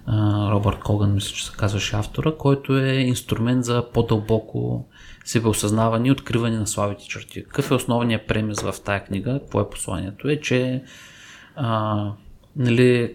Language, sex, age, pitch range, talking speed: Bulgarian, male, 20-39, 105-125 Hz, 145 wpm